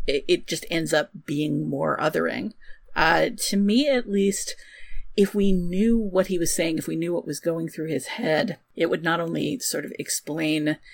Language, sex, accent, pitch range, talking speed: English, female, American, 165-205 Hz, 190 wpm